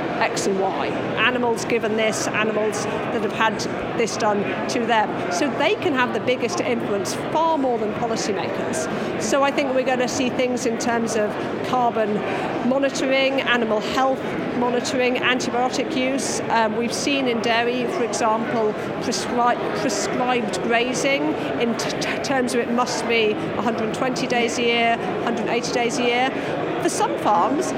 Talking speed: 150 wpm